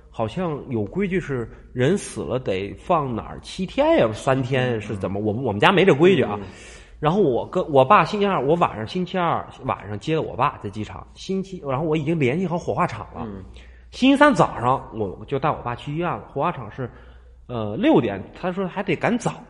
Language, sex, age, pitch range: Chinese, male, 30-49, 105-160 Hz